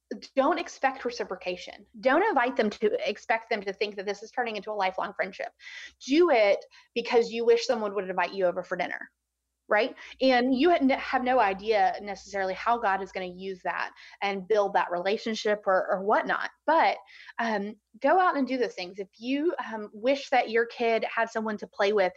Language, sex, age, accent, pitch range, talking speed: English, female, 30-49, American, 200-275 Hz, 195 wpm